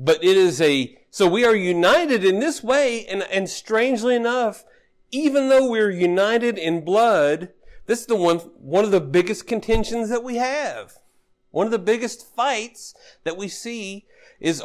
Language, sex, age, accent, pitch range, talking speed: English, male, 50-69, American, 140-230 Hz, 170 wpm